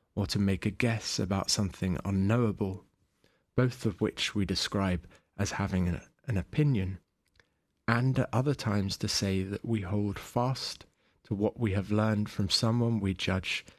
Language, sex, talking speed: English, male, 155 wpm